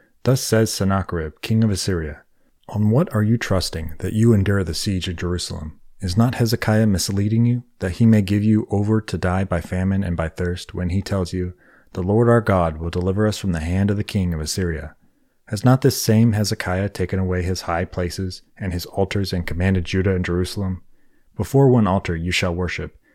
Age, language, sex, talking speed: 30-49, English, male, 205 wpm